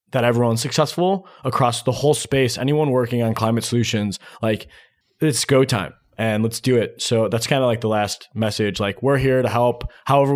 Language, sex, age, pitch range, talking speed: English, male, 20-39, 105-135 Hz, 195 wpm